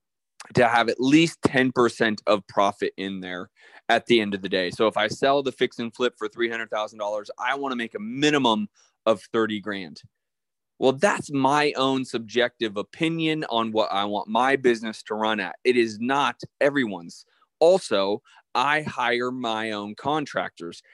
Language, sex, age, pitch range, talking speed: English, male, 20-39, 105-135 Hz, 170 wpm